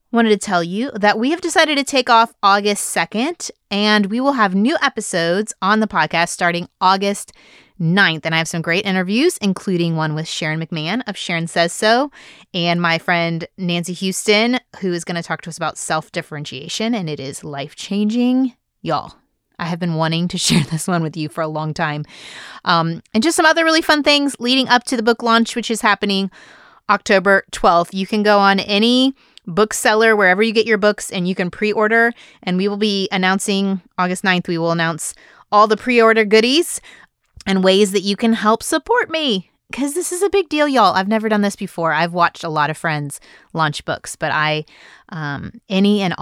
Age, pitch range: 20-39, 175-235 Hz